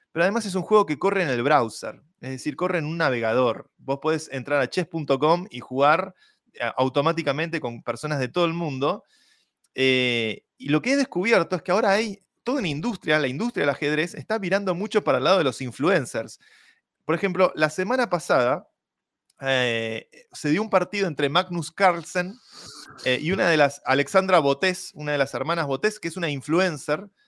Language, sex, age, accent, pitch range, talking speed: Spanish, male, 20-39, Argentinian, 135-180 Hz, 185 wpm